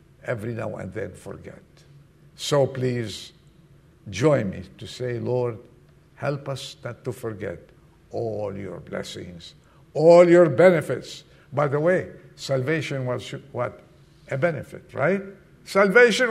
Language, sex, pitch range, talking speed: English, male, 130-175 Hz, 120 wpm